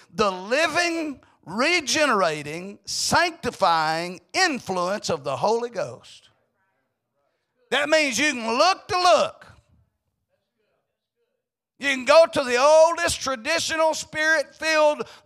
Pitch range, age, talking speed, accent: 200-305 Hz, 50-69, 95 wpm, American